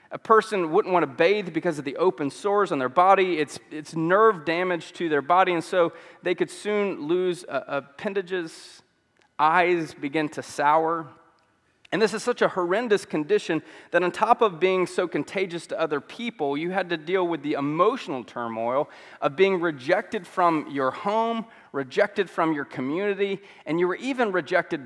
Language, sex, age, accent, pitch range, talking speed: English, male, 30-49, American, 150-205 Hz, 175 wpm